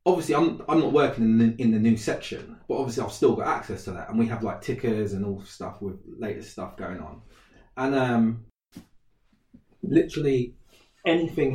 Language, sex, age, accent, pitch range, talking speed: English, male, 20-39, British, 100-125 Hz, 185 wpm